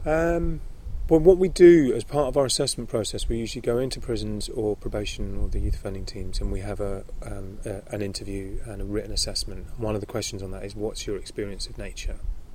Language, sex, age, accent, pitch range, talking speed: English, male, 30-49, British, 100-115 Hz, 225 wpm